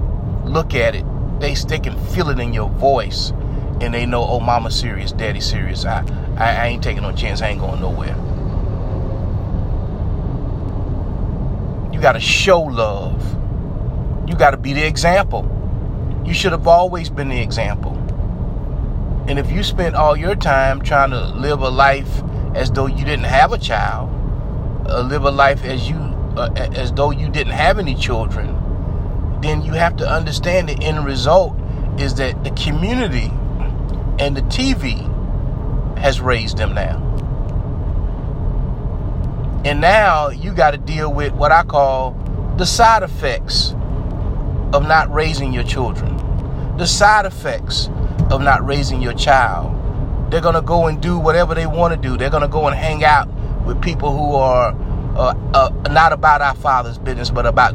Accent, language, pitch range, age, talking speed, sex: American, English, 105-145 Hz, 30-49, 160 wpm, male